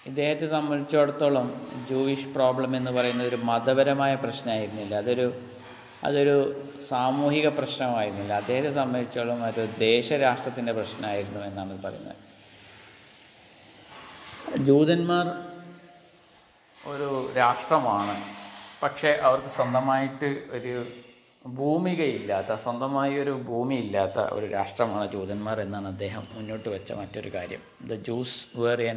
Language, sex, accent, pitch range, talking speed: Malayalam, male, native, 110-135 Hz, 90 wpm